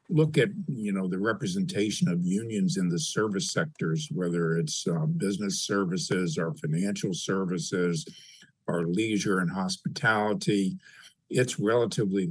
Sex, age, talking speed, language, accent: male, 50-69, 125 wpm, English, American